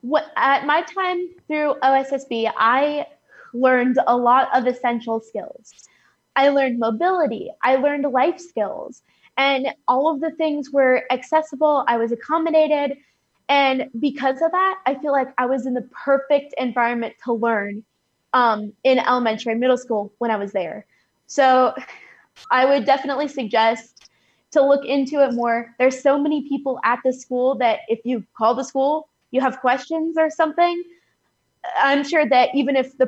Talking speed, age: 160 wpm, 20-39